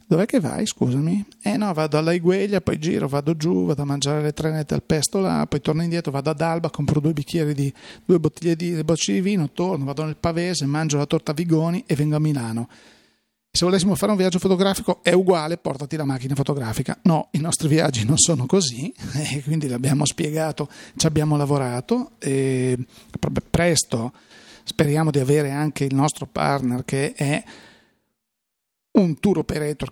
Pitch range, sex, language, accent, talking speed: 135-170 Hz, male, Italian, native, 180 wpm